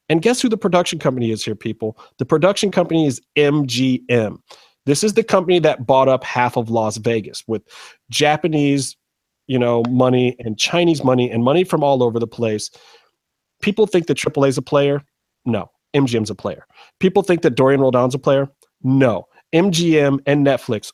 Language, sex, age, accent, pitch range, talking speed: English, male, 30-49, American, 125-180 Hz, 185 wpm